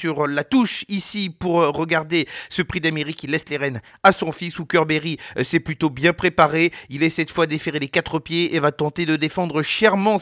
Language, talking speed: French, 210 wpm